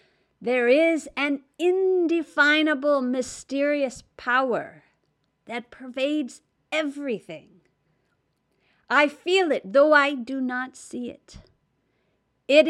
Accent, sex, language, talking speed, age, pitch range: American, female, English, 90 wpm, 50-69, 220-285 Hz